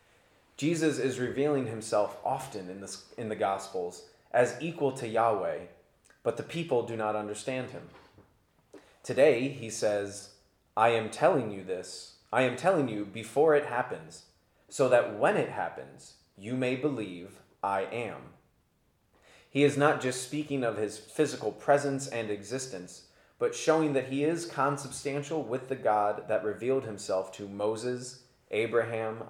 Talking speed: 145 wpm